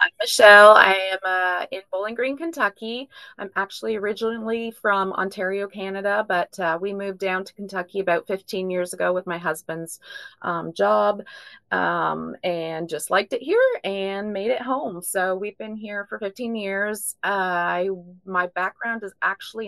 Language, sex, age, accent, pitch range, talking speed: English, female, 30-49, American, 180-220 Hz, 160 wpm